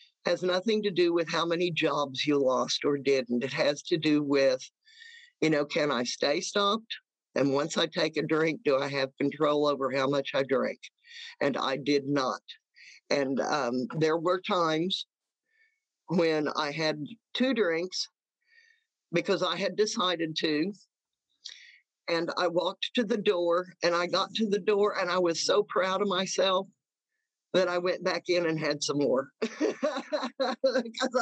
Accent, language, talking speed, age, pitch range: American, English, 165 wpm, 50-69, 170-230 Hz